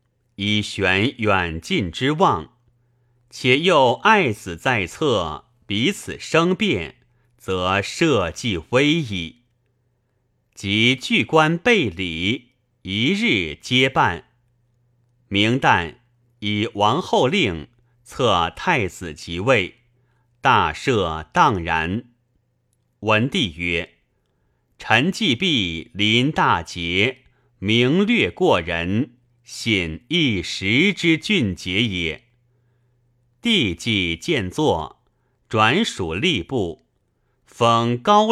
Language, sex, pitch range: Chinese, male, 100-125 Hz